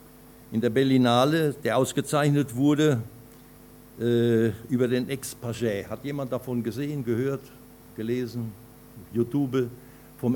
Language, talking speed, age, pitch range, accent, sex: German, 105 wpm, 60-79, 115-135 Hz, German, male